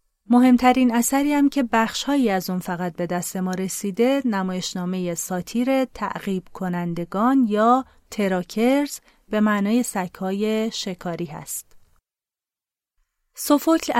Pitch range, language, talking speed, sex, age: 185-245 Hz, Persian, 105 wpm, female, 30-49